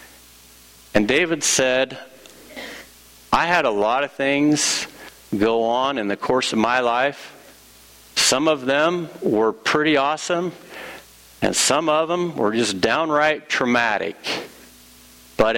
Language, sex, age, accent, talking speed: English, male, 50-69, American, 125 wpm